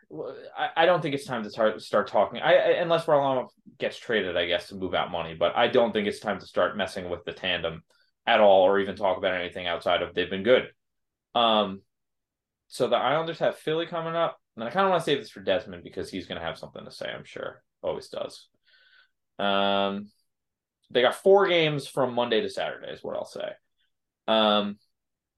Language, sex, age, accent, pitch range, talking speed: English, male, 20-39, American, 105-145 Hz, 205 wpm